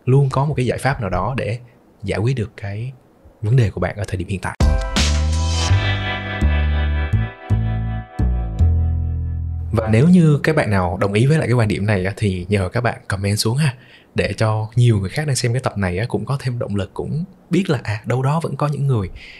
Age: 20-39